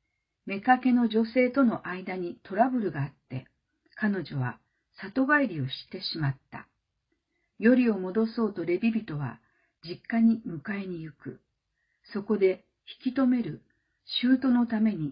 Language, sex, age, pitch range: Japanese, female, 50-69, 170-235 Hz